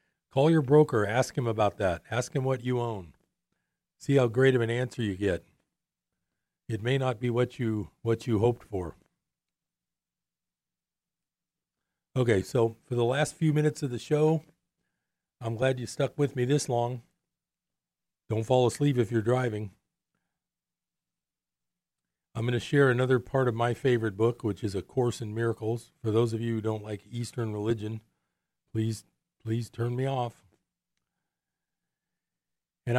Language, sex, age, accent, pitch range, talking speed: English, male, 40-59, American, 110-140 Hz, 155 wpm